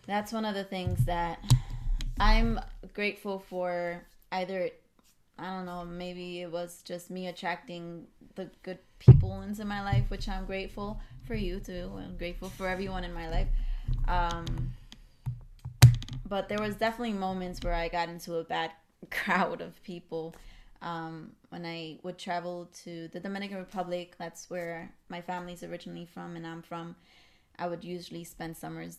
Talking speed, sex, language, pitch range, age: 155 wpm, female, English, 170-195 Hz, 20-39